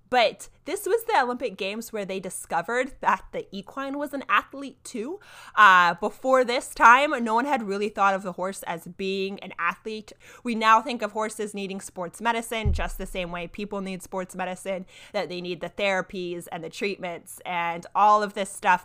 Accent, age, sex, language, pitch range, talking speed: American, 20-39, female, English, 185-260 Hz, 195 wpm